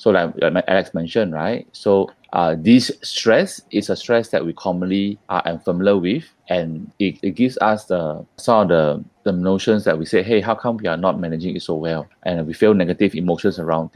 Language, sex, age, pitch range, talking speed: English, male, 20-39, 90-110 Hz, 205 wpm